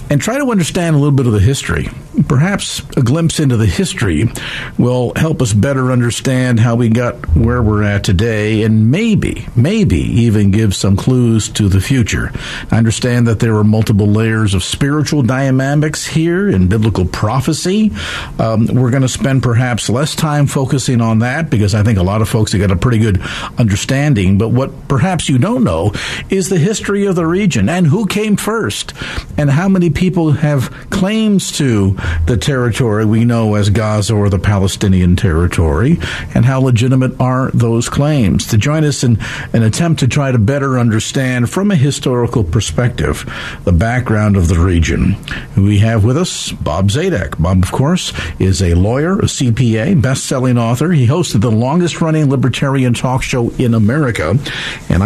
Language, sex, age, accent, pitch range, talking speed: English, male, 50-69, American, 110-145 Hz, 180 wpm